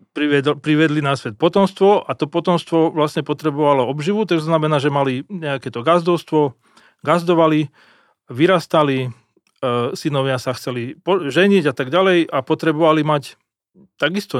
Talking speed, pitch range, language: 140 wpm, 140-180 Hz, Slovak